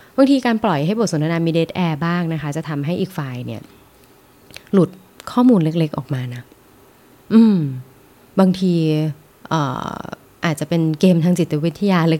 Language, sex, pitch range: Thai, female, 145-180 Hz